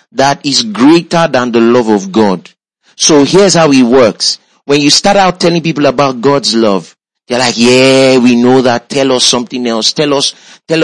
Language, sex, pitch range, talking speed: English, male, 120-165 Hz, 195 wpm